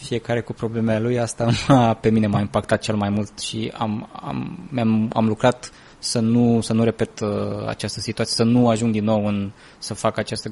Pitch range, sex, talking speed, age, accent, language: 110-125 Hz, male, 170 wpm, 20-39, native, Romanian